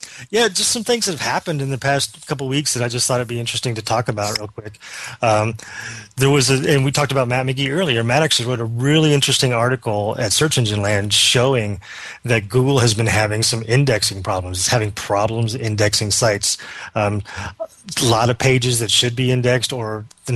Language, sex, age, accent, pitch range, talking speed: English, male, 30-49, American, 110-130 Hz, 210 wpm